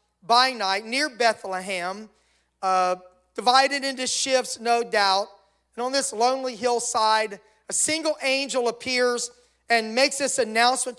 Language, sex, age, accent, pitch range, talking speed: English, male, 40-59, American, 195-245 Hz, 125 wpm